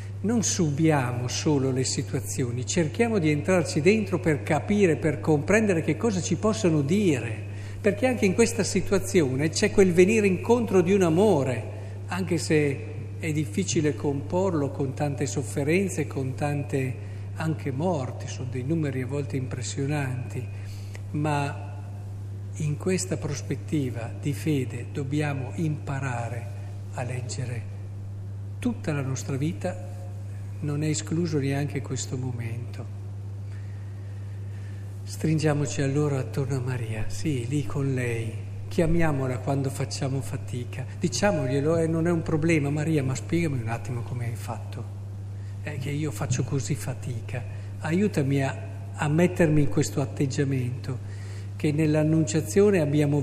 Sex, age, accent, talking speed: male, 50-69, native, 125 wpm